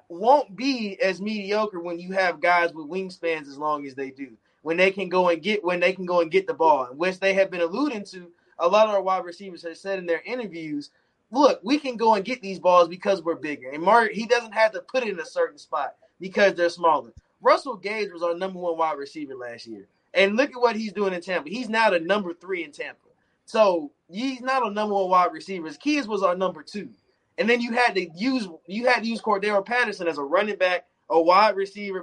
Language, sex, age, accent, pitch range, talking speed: English, male, 20-39, American, 175-220 Hz, 235 wpm